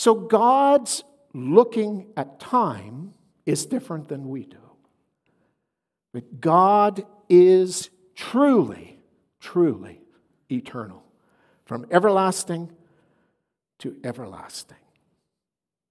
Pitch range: 155-215 Hz